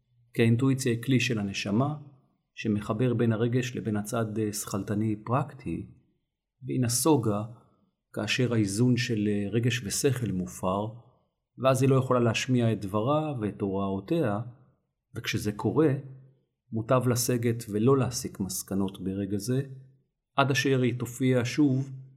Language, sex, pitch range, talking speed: Hebrew, male, 105-130 Hz, 120 wpm